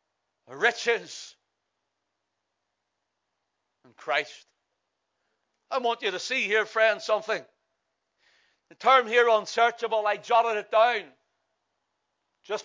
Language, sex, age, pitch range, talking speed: English, male, 60-79, 215-240 Hz, 95 wpm